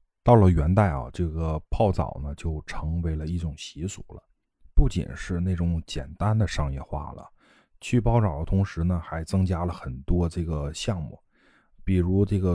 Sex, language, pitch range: male, Chinese, 80-100 Hz